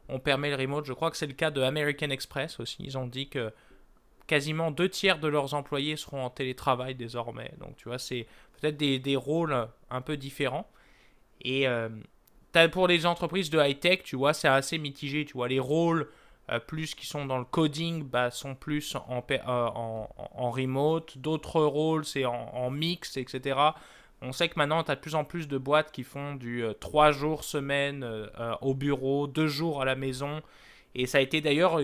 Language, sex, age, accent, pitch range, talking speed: French, male, 20-39, French, 130-160 Hz, 205 wpm